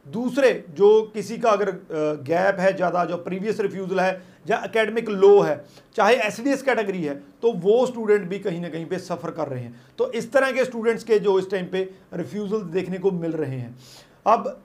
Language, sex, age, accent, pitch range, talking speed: Hindi, male, 40-59, native, 190-235 Hz, 200 wpm